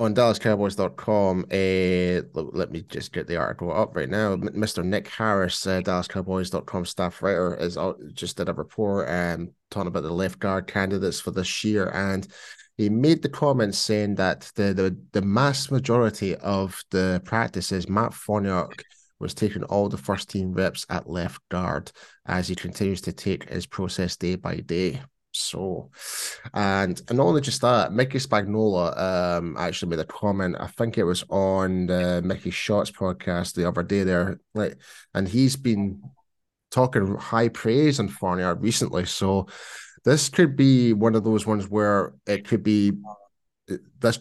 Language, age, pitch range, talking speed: English, 30-49, 95-110 Hz, 165 wpm